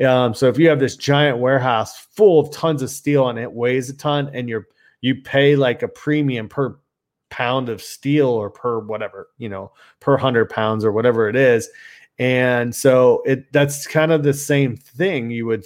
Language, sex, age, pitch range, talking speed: English, male, 30-49, 120-145 Hz, 200 wpm